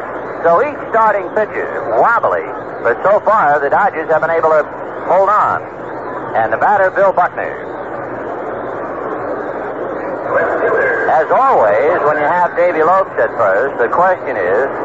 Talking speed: 135 wpm